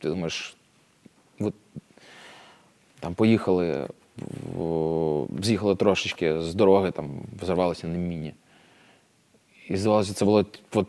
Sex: male